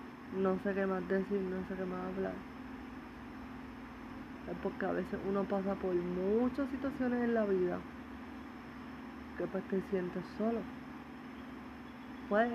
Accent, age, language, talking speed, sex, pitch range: Indian, 20-39, English, 135 wpm, female, 190-260 Hz